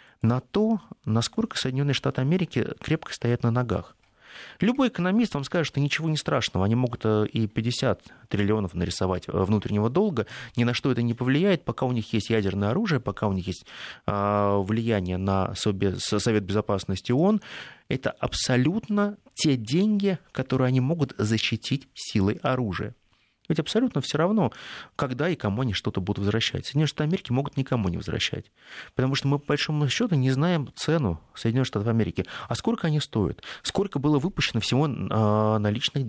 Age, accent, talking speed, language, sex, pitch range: 30-49, native, 160 wpm, Russian, male, 110-155 Hz